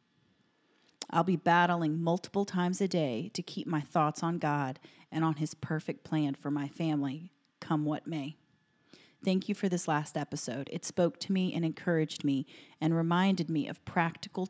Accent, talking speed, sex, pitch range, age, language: American, 175 wpm, female, 155-185 Hz, 40-59, English